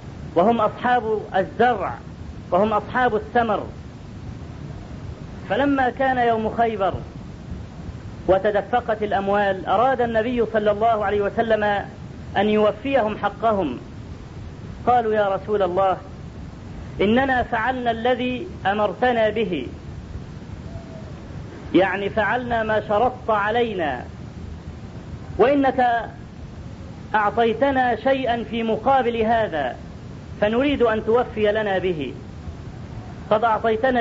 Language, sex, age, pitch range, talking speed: Arabic, female, 40-59, 200-235 Hz, 85 wpm